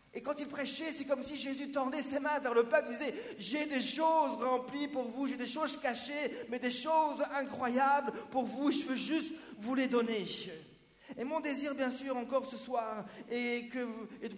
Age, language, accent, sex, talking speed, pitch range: 50-69, French, French, male, 200 wpm, 210-260 Hz